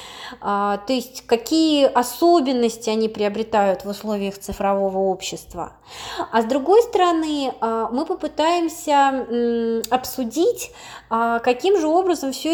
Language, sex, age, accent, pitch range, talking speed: Russian, female, 20-39, native, 215-290 Hz, 100 wpm